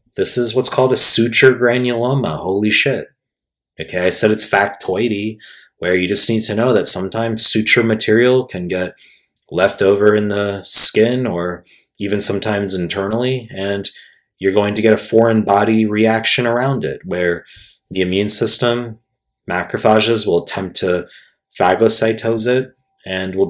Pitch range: 95-115 Hz